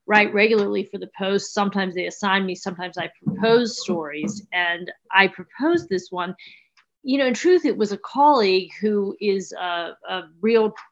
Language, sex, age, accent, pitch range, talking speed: English, female, 40-59, American, 180-210 Hz, 170 wpm